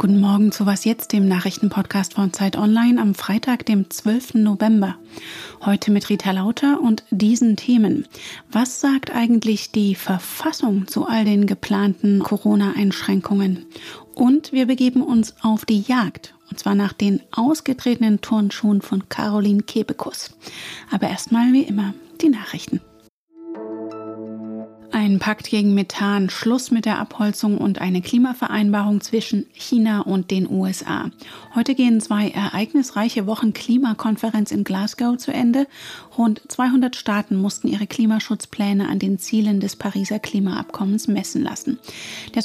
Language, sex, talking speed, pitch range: German, female, 135 wpm, 200-245 Hz